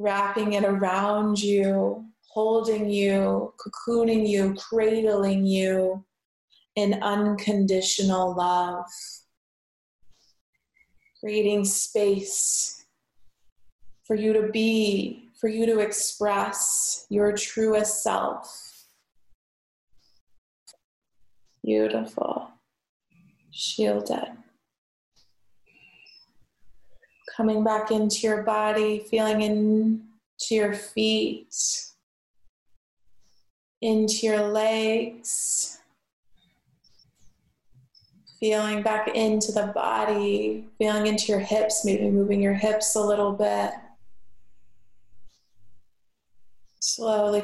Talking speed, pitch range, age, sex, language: 70 wpm, 190-215 Hz, 20-39, female, English